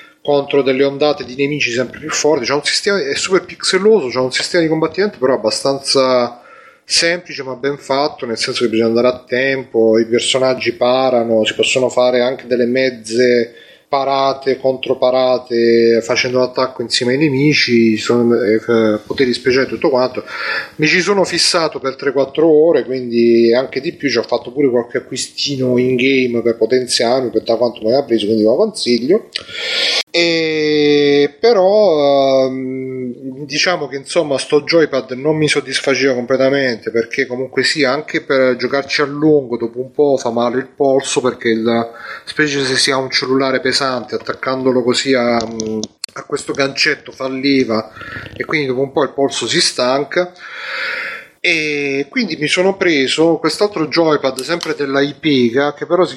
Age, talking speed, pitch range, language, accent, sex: 30-49, 160 wpm, 125-150 Hz, Italian, native, male